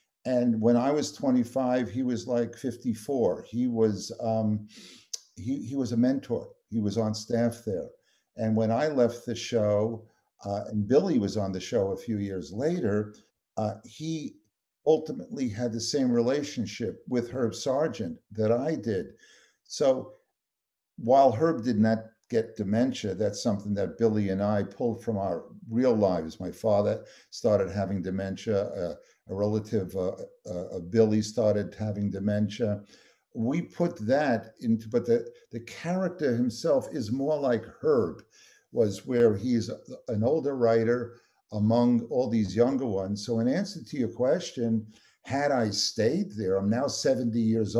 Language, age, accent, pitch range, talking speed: English, 50-69, American, 105-125 Hz, 150 wpm